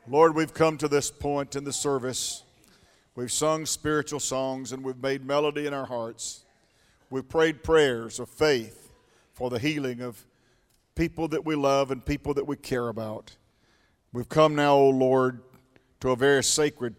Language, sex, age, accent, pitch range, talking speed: English, male, 50-69, American, 120-150 Hz, 170 wpm